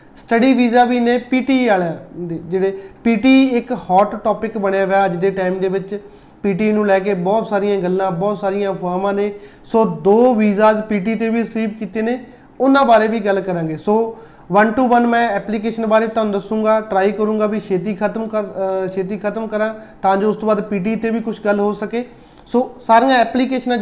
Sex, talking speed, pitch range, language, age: male, 190 wpm, 195-220 Hz, Punjabi, 30-49